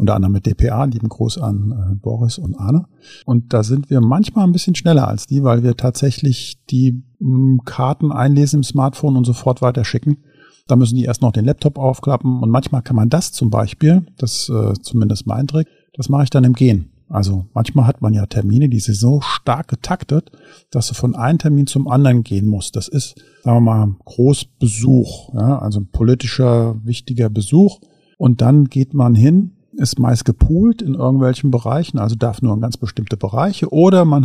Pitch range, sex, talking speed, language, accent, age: 120-140 Hz, male, 195 wpm, German, German, 50-69